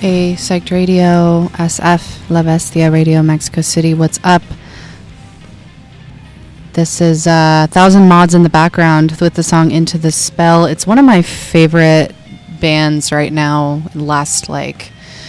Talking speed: 135 wpm